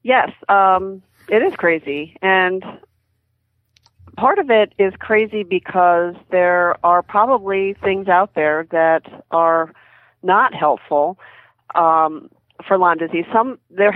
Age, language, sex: 40-59, English, female